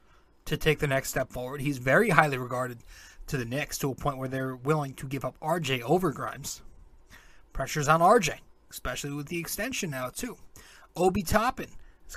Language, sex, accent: English, male, American